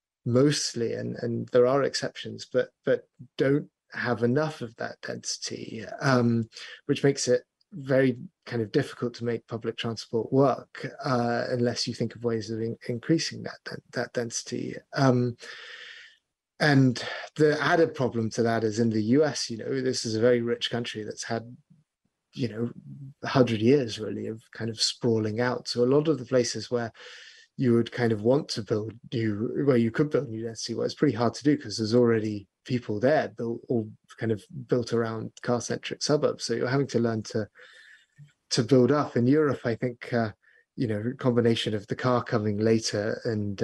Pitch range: 115-130 Hz